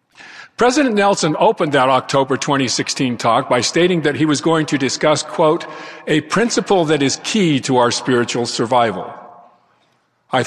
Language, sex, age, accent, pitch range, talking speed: English, male, 50-69, American, 125-160 Hz, 150 wpm